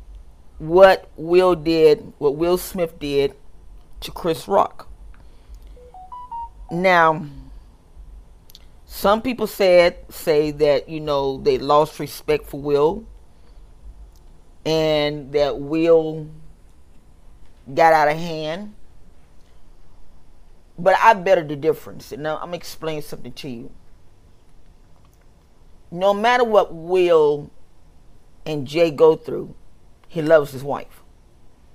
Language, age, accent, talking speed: English, 40-59, American, 100 wpm